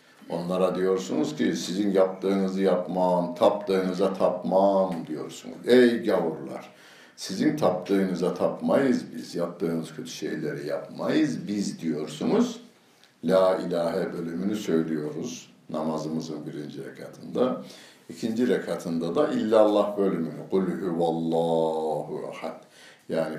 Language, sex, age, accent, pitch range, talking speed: Turkish, male, 60-79, native, 80-95 Hz, 85 wpm